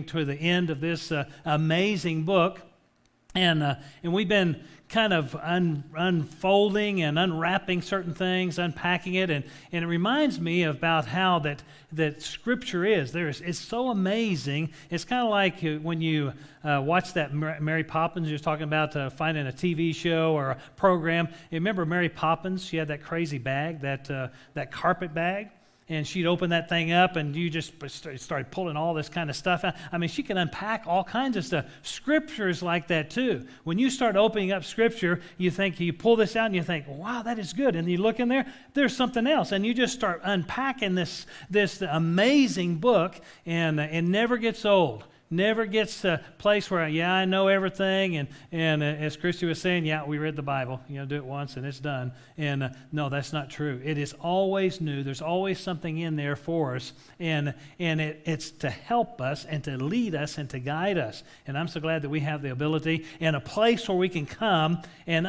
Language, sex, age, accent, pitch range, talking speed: English, male, 40-59, American, 150-190 Hz, 205 wpm